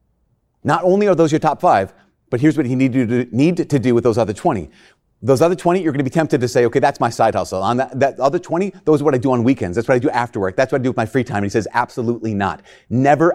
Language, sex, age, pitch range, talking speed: English, male, 30-49, 125-185 Hz, 290 wpm